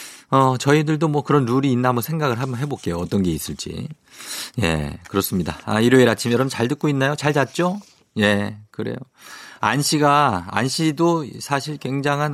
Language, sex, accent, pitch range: Korean, male, native, 95-140 Hz